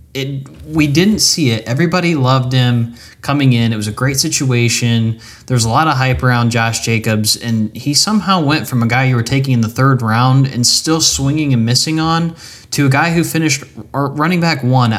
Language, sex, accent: English, male, American